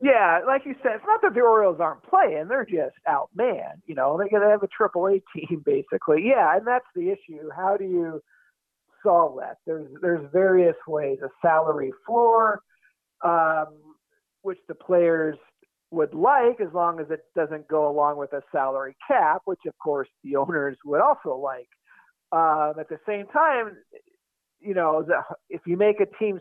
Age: 50-69